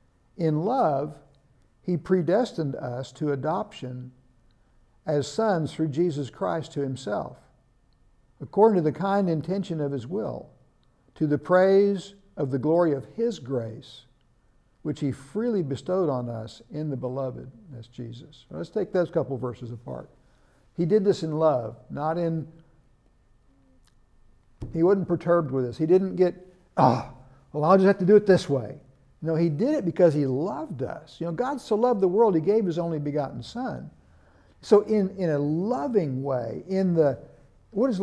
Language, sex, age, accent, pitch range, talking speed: English, male, 60-79, American, 135-185 Hz, 165 wpm